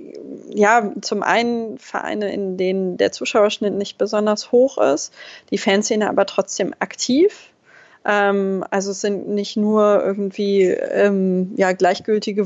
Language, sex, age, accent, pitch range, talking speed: German, female, 20-39, German, 190-220 Hz, 125 wpm